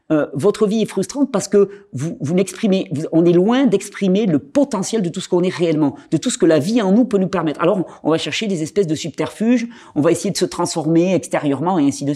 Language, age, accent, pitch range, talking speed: French, 40-59, French, 145-205 Hz, 255 wpm